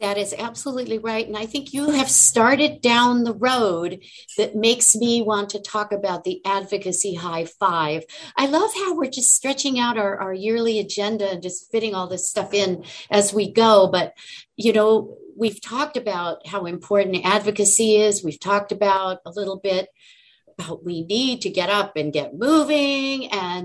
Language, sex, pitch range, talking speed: English, female, 185-240 Hz, 180 wpm